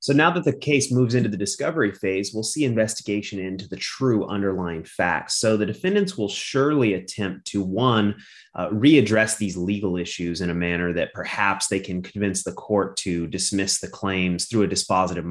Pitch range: 90-110 Hz